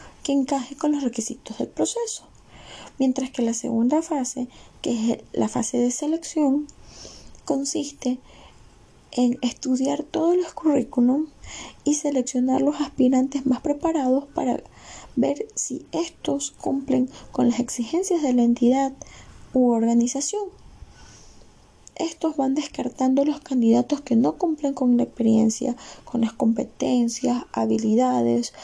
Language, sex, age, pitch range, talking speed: Spanish, female, 10-29, 245-295 Hz, 120 wpm